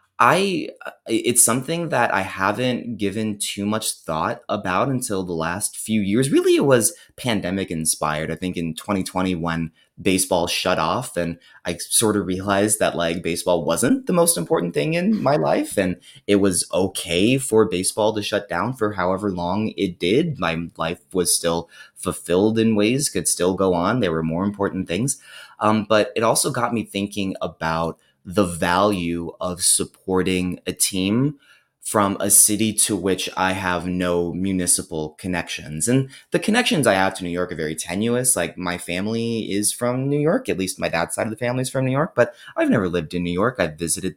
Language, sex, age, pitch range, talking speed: English, male, 30-49, 90-110 Hz, 185 wpm